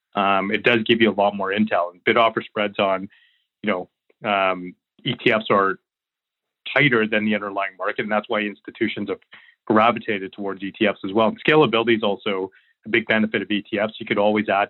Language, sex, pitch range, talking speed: English, male, 95-110 Hz, 190 wpm